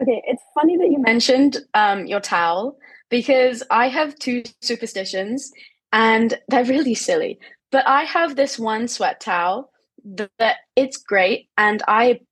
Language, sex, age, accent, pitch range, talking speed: English, female, 20-39, British, 205-265 Hz, 145 wpm